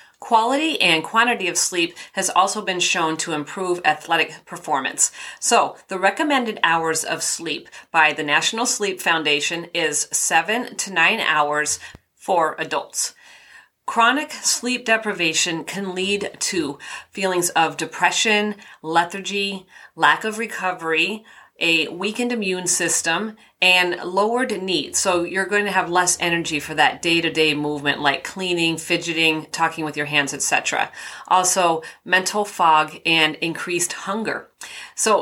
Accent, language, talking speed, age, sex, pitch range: American, English, 130 wpm, 40-59, female, 165-205 Hz